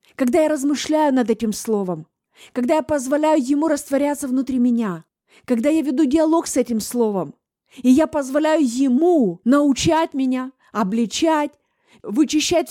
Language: Russian